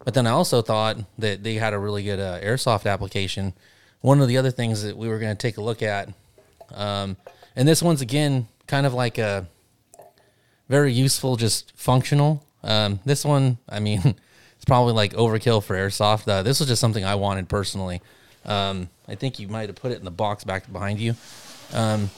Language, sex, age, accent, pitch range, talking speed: English, male, 20-39, American, 100-125 Hz, 205 wpm